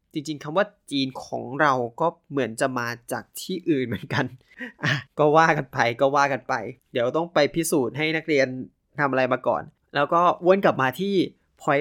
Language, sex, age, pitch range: Thai, male, 20-39, 135-175 Hz